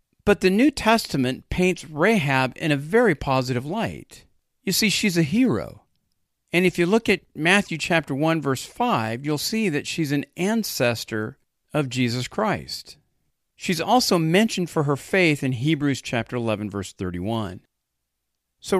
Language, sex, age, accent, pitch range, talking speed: English, male, 50-69, American, 125-180 Hz, 155 wpm